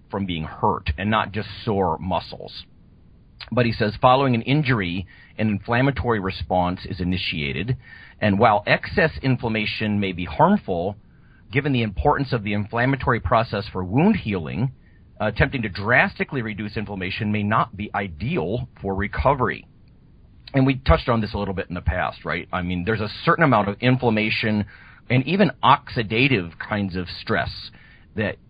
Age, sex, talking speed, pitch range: 40-59, male, 155 wpm, 95-125 Hz